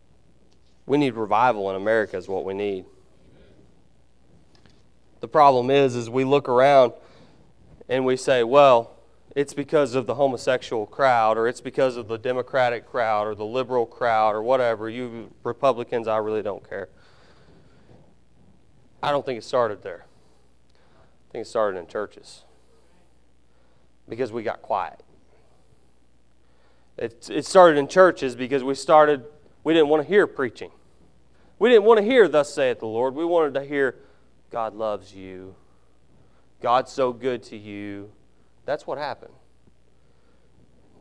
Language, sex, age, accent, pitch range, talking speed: English, male, 30-49, American, 95-145 Hz, 145 wpm